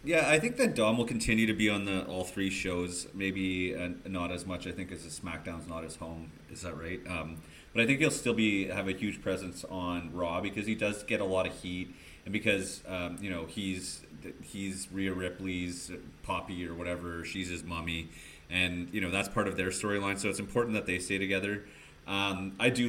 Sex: male